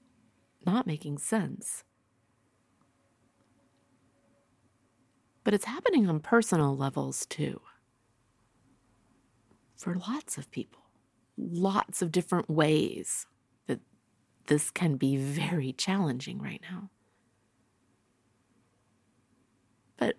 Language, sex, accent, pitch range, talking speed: English, female, American, 110-170 Hz, 80 wpm